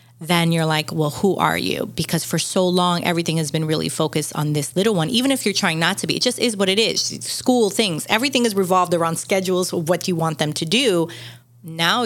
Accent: American